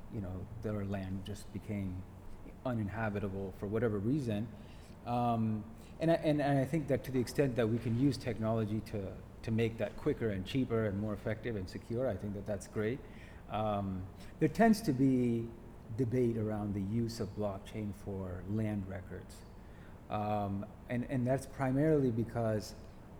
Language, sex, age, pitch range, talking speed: English, male, 30-49, 100-125 Hz, 160 wpm